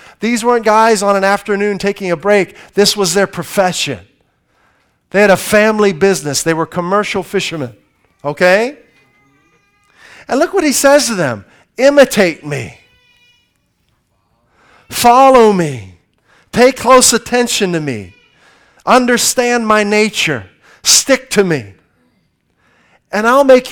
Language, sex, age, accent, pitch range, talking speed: English, male, 50-69, American, 150-215 Hz, 120 wpm